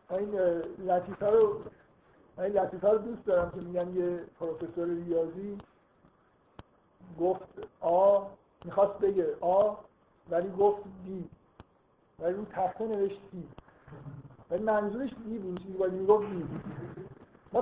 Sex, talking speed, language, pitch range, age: male, 110 wpm, Persian, 165-205 Hz, 50-69